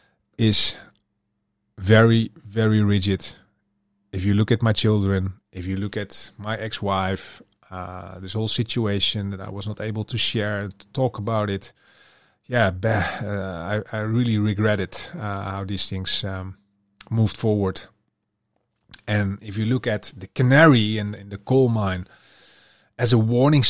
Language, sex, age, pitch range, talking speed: English, male, 30-49, 100-120 Hz, 150 wpm